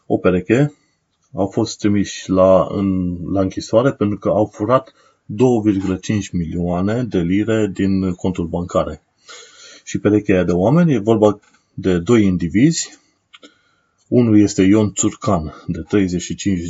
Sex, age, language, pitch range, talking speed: male, 30-49, Romanian, 95-120 Hz, 125 wpm